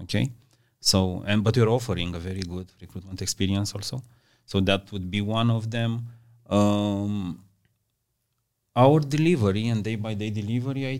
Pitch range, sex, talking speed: 100-120 Hz, male, 155 wpm